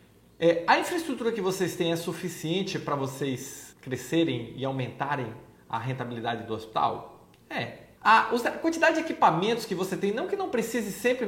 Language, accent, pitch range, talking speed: Portuguese, Brazilian, 135-190 Hz, 155 wpm